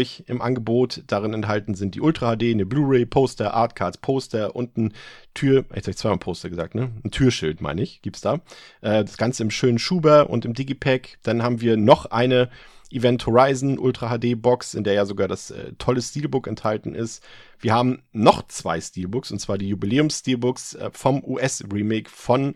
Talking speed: 175 wpm